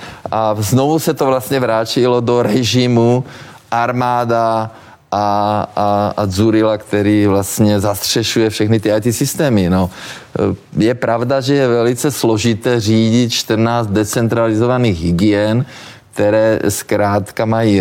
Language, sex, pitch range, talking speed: Czech, male, 105-120 Hz, 110 wpm